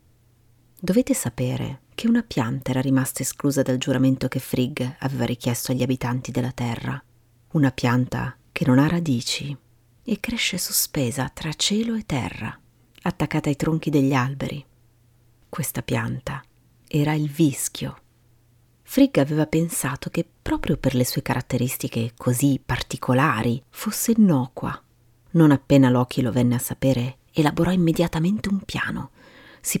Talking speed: 135 wpm